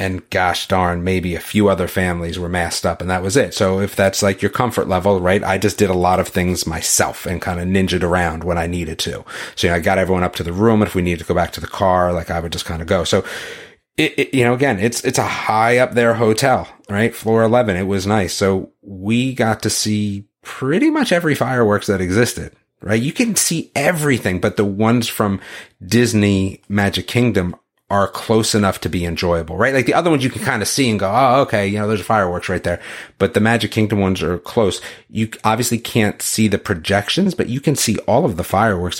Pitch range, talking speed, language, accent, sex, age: 90-115 Hz, 240 wpm, English, American, male, 30-49